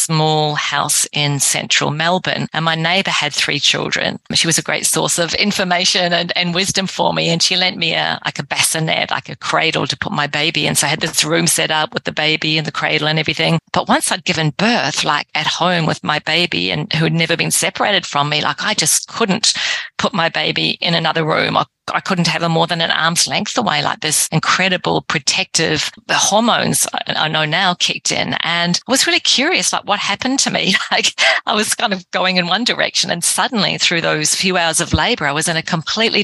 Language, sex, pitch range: English, female, 155-190 Hz